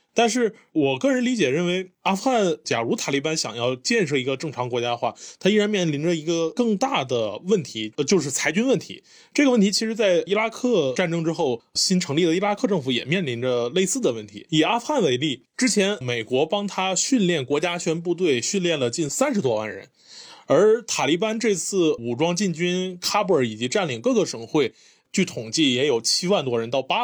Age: 20-39